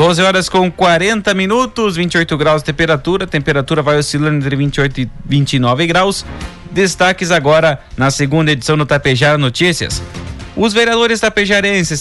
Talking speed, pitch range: 145 wpm, 145-175 Hz